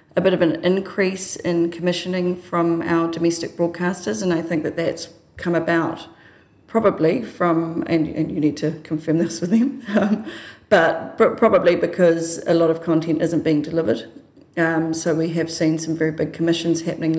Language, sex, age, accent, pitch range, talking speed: English, female, 30-49, Australian, 155-170 Hz, 175 wpm